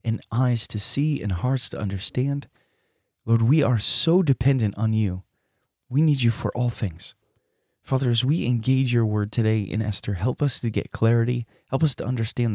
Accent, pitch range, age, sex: American, 110-135 Hz, 30-49, male